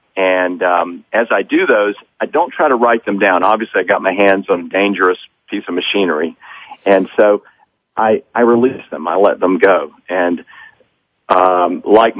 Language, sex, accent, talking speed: English, male, American, 180 wpm